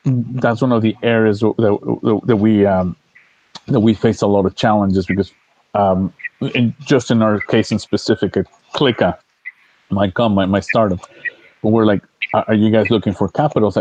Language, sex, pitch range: English, male, 100-115 Hz